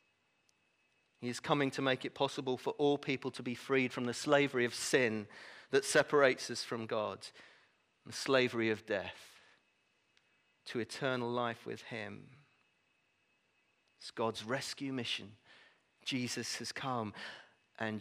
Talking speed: 135 wpm